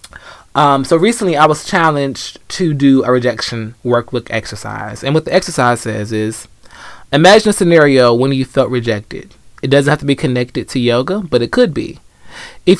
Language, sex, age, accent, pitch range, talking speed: English, male, 20-39, American, 120-155 Hz, 180 wpm